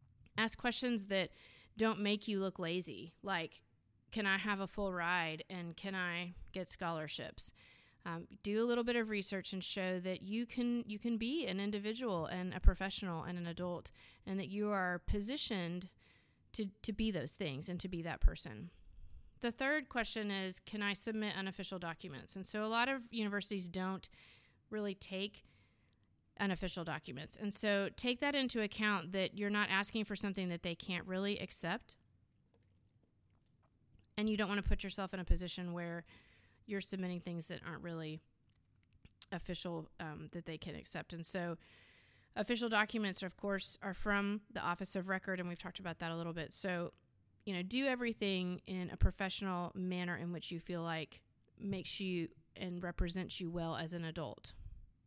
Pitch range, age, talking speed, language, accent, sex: 165-205 Hz, 30-49, 175 wpm, English, American, female